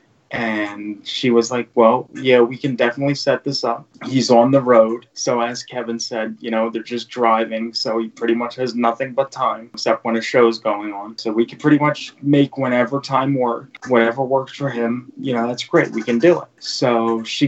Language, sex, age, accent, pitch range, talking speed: English, male, 20-39, American, 120-145 Hz, 215 wpm